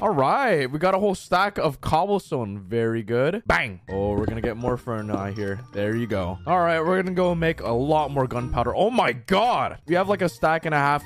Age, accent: 20-39, American